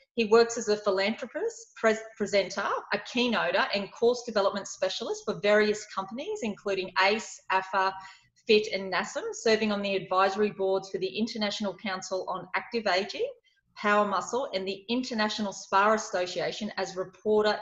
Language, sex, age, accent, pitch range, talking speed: English, female, 30-49, Australian, 190-230 Hz, 145 wpm